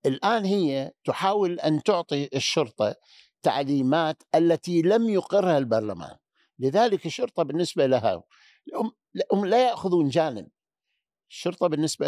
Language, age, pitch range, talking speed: Arabic, 60-79, 135-185 Hz, 105 wpm